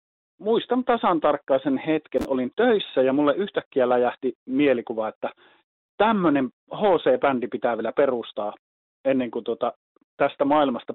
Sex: male